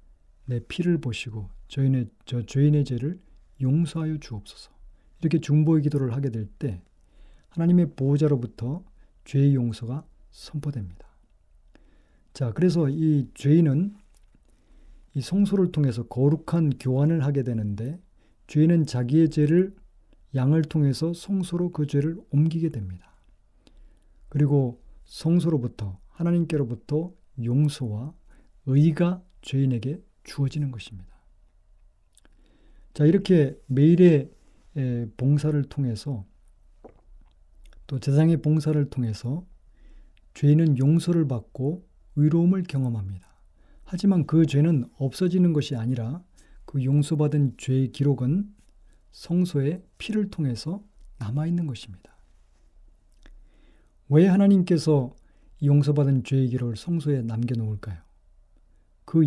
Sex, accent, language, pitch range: male, native, Korean, 120-160 Hz